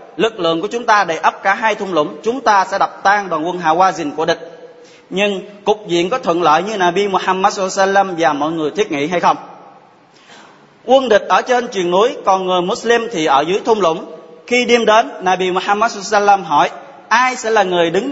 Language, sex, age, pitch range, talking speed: Vietnamese, male, 20-39, 175-220 Hz, 220 wpm